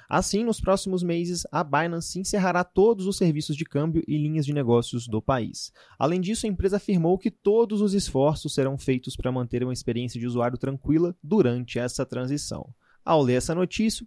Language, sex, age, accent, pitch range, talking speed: Portuguese, male, 20-39, Brazilian, 140-200 Hz, 185 wpm